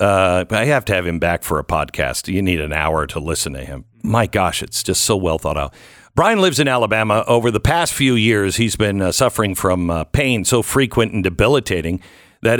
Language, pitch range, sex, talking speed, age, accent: English, 95-125 Hz, male, 225 wpm, 50-69, American